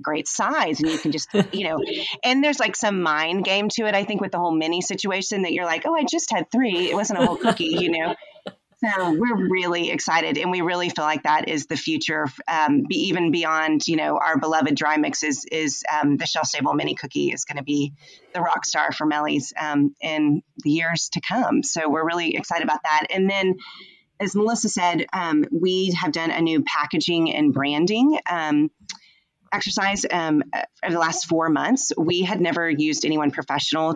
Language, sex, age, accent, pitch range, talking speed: English, female, 30-49, American, 155-215 Hz, 205 wpm